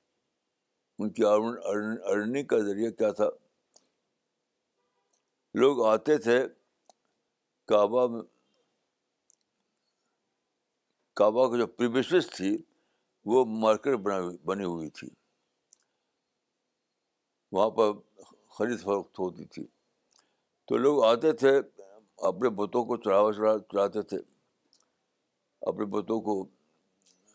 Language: Urdu